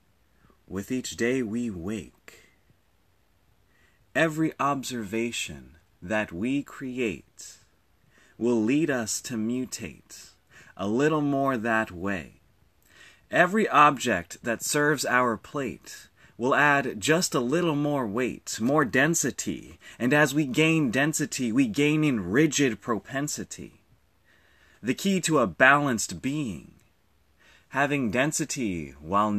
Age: 30-49